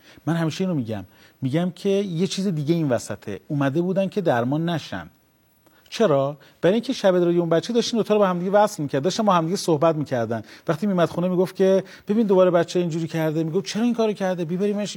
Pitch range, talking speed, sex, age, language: 150-200 Hz, 200 wpm, male, 40-59, Persian